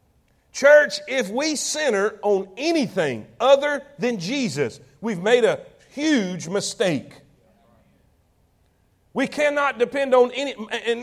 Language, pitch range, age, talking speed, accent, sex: English, 185-245 Hz, 50-69, 110 wpm, American, male